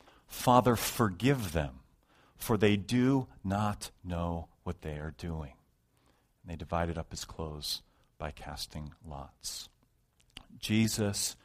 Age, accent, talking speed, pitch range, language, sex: 40-59, American, 110 wpm, 85-125 Hz, English, male